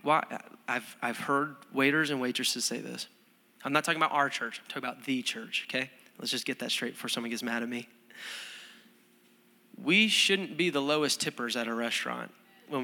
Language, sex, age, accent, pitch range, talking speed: English, male, 20-39, American, 125-155 Hz, 195 wpm